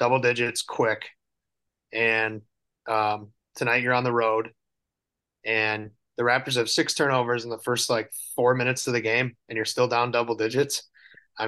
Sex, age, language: male, 30-49, English